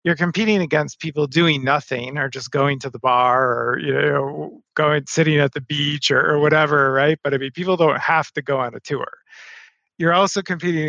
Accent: American